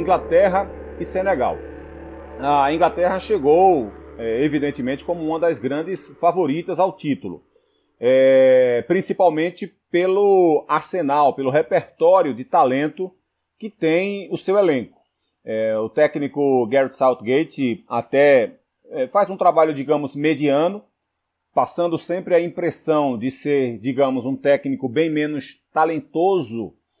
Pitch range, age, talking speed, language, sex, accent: 135-185 Hz, 40-59, 105 wpm, Portuguese, male, Brazilian